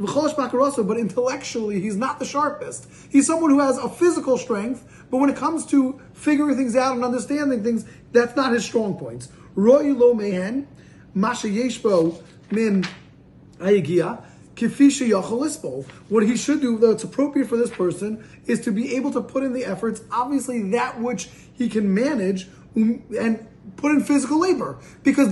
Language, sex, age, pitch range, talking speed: English, male, 20-39, 210-265 Hz, 140 wpm